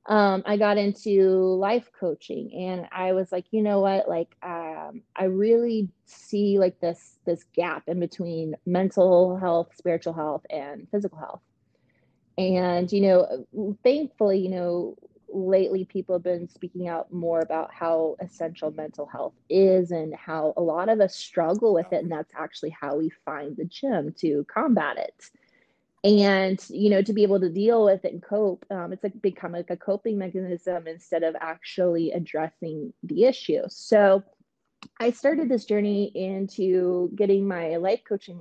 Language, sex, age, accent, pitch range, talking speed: English, female, 20-39, American, 170-200 Hz, 165 wpm